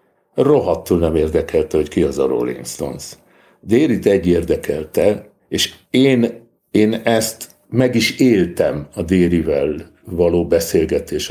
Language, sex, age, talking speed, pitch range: Hungarian, male, 60-79, 120 wpm, 85-130 Hz